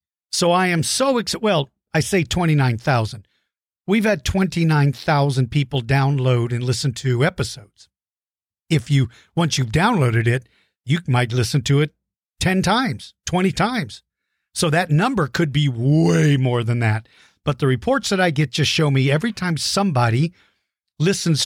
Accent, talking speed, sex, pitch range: American, 155 wpm, male, 130-180 Hz